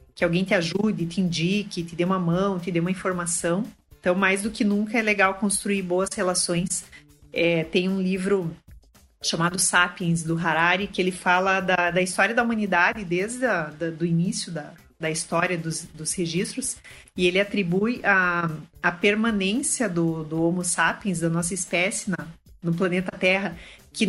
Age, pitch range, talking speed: 30-49, 175-215 Hz, 170 wpm